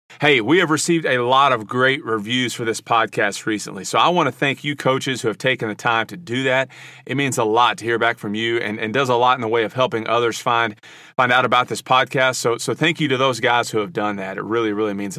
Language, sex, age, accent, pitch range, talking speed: English, male, 40-59, American, 110-140 Hz, 275 wpm